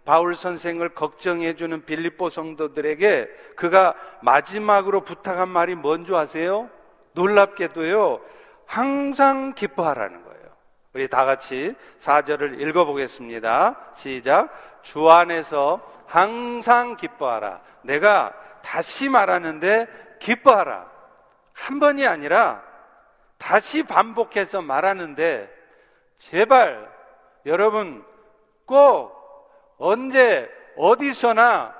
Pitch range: 170-240 Hz